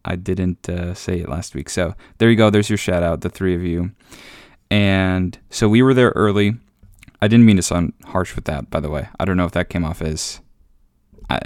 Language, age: English, 20-39